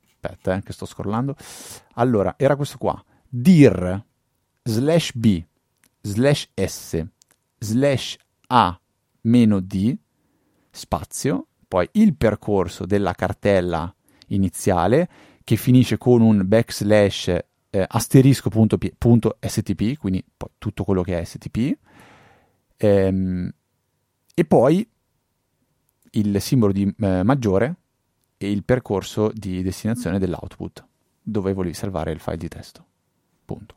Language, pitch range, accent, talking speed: Italian, 95-125 Hz, native, 110 wpm